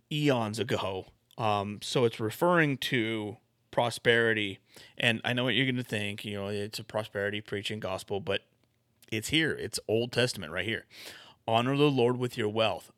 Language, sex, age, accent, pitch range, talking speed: English, male, 30-49, American, 105-125 Hz, 170 wpm